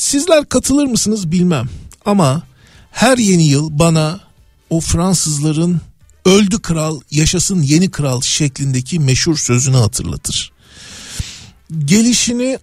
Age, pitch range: 50-69, 125-175 Hz